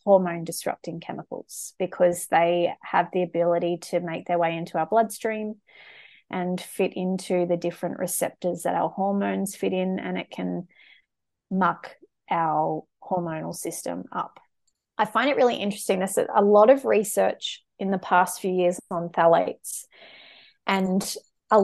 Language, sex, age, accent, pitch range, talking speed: English, female, 30-49, Australian, 180-205 Hz, 145 wpm